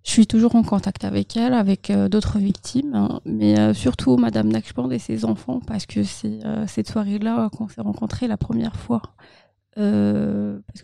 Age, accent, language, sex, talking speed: 30-49, French, French, female, 190 wpm